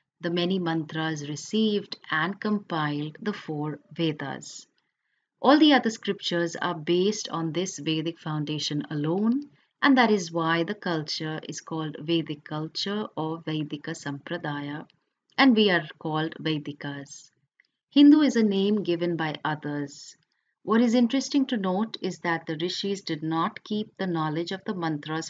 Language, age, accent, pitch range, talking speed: English, 30-49, Indian, 155-210 Hz, 145 wpm